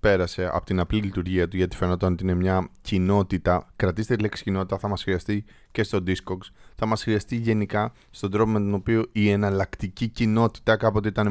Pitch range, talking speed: 90-100 Hz, 190 wpm